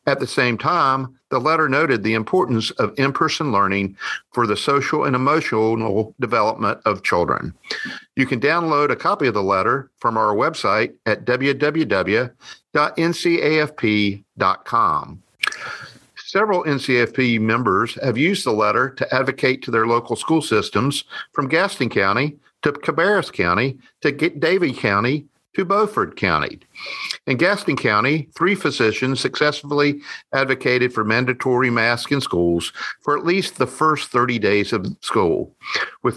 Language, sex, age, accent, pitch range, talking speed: English, male, 50-69, American, 110-145 Hz, 135 wpm